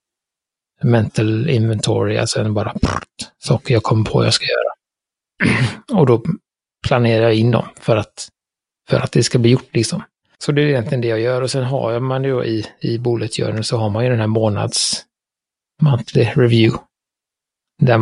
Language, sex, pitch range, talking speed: Swedish, male, 115-135 Hz, 185 wpm